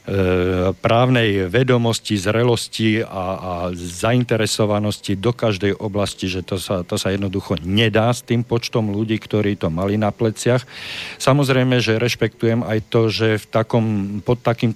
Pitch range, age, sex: 100-120 Hz, 50-69, male